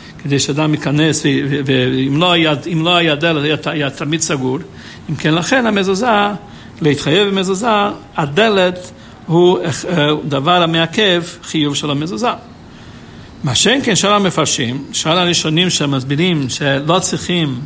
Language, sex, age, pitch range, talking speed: Hebrew, male, 60-79, 150-205 Hz, 135 wpm